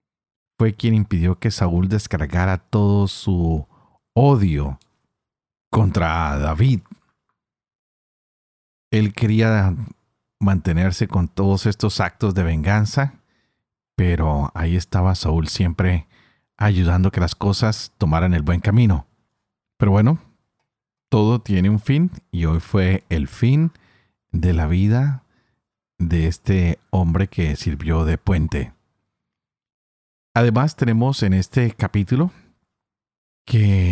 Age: 40-59